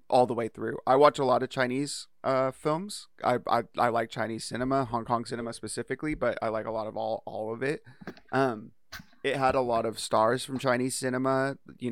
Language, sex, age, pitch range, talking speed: English, male, 30-49, 115-135 Hz, 215 wpm